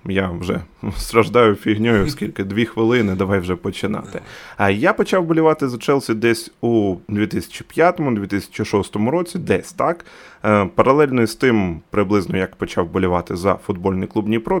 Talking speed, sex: 135 wpm, male